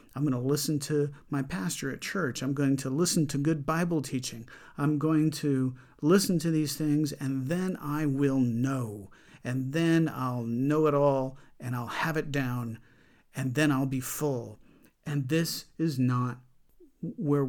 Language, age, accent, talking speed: English, 50-69, American, 170 wpm